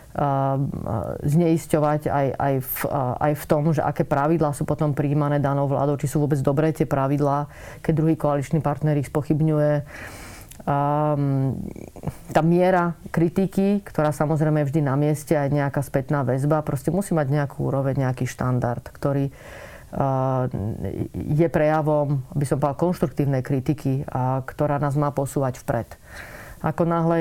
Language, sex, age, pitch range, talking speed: Slovak, female, 30-49, 140-160 Hz, 130 wpm